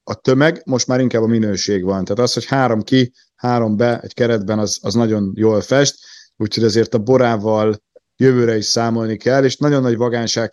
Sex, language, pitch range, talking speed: male, Hungarian, 110-130 Hz, 195 wpm